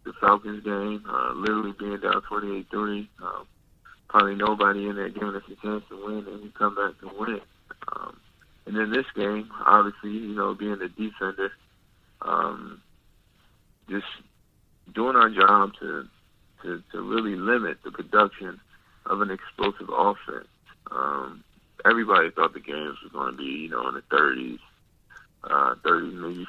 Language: English